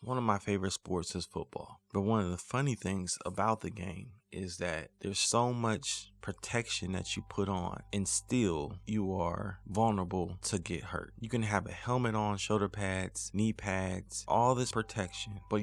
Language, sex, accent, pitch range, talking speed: English, male, American, 95-115 Hz, 185 wpm